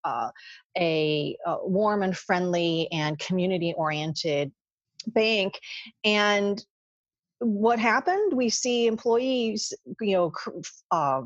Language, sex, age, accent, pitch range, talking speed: English, female, 30-49, American, 165-220 Hz, 105 wpm